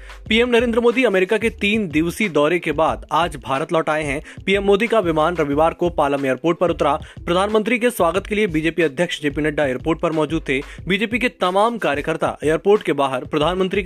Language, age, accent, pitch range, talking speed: Hindi, 20-39, native, 145-195 Hz, 200 wpm